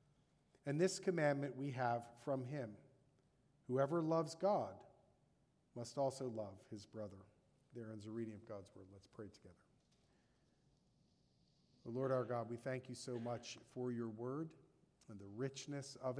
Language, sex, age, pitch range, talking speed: English, male, 40-59, 120-155 Hz, 150 wpm